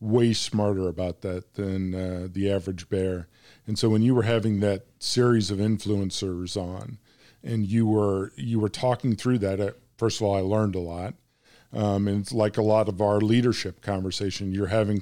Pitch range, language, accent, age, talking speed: 100-120 Hz, English, American, 40-59, 190 wpm